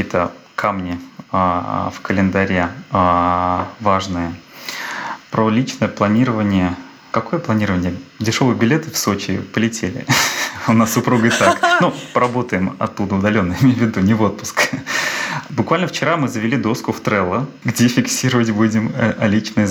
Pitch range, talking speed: 95-125 Hz, 130 wpm